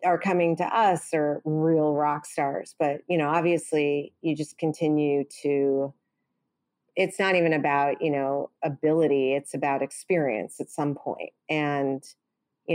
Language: English